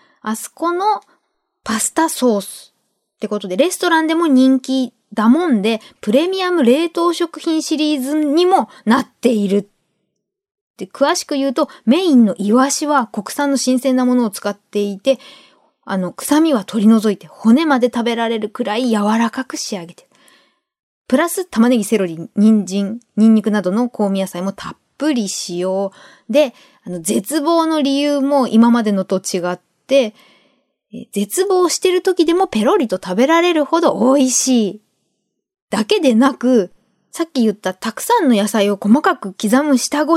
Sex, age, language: female, 20-39, Japanese